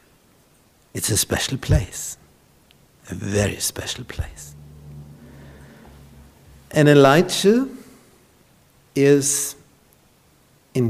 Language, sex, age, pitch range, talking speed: English, male, 60-79, 110-160 Hz, 65 wpm